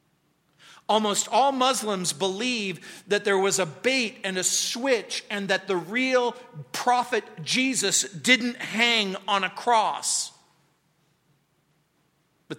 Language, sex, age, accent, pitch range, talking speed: English, male, 40-59, American, 185-240 Hz, 115 wpm